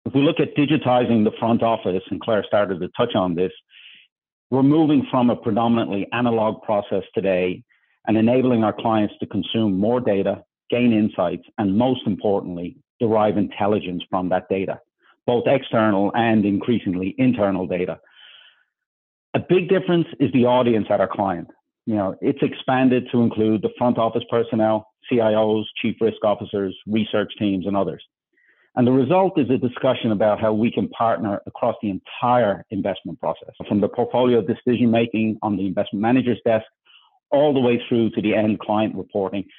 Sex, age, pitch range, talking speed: male, 50-69, 105-120 Hz, 160 wpm